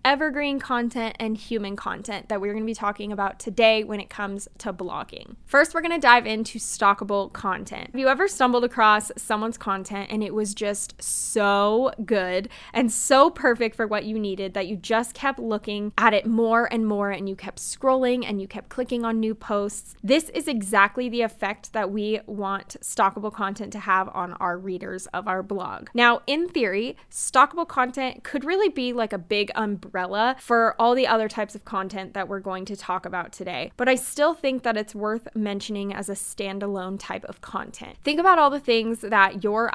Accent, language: American, English